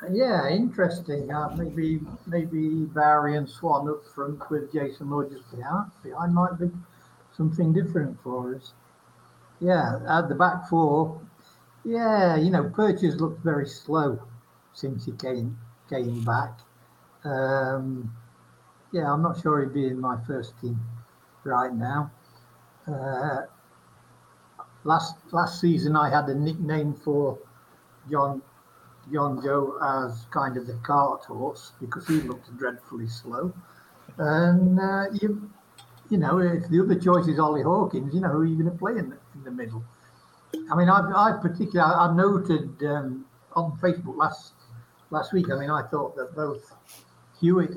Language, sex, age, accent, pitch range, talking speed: English, male, 60-79, British, 135-175 Hz, 150 wpm